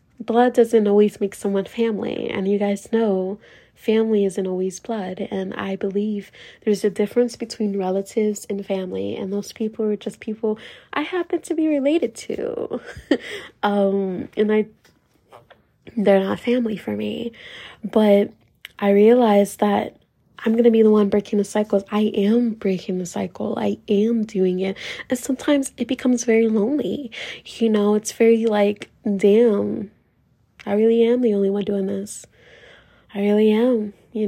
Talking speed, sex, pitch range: 160 wpm, female, 200-230 Hz